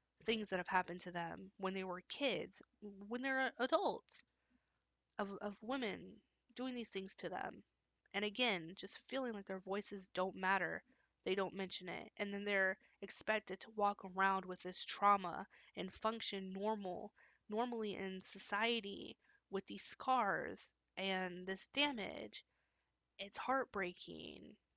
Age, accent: 20-39, American